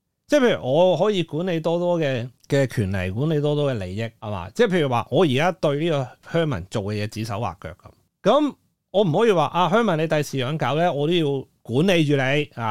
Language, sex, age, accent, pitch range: Chinese, male, 30-49, native, 125-175 Hz